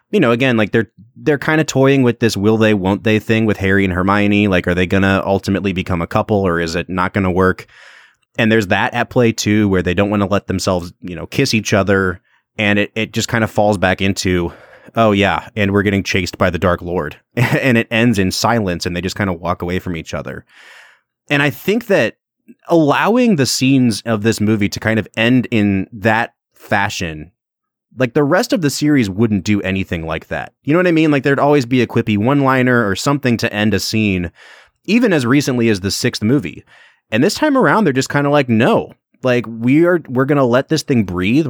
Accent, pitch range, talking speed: American, 95-125 Hz, 230 wpm